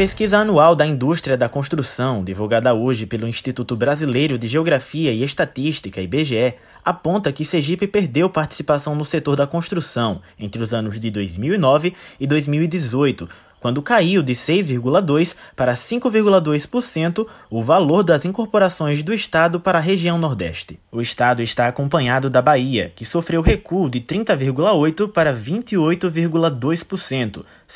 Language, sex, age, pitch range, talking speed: Portuguese, male, 20-39, 125-175 Hz, 130 wpm